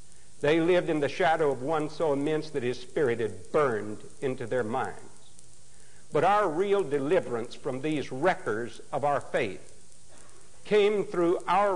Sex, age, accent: male, 60-79, American